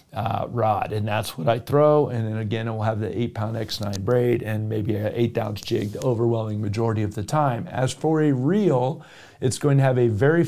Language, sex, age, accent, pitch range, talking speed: English, male, 40-59, American, 115-140 Hz, 220 wpm